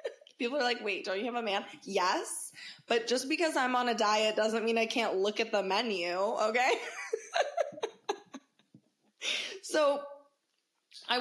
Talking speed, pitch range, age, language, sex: 150 wpm, 200-265 Hz, 20-39, English, female